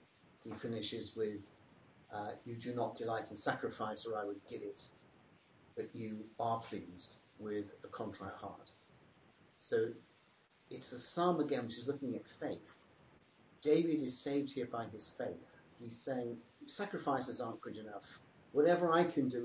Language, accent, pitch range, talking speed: English, British, 115-150 Hz, 155 wpm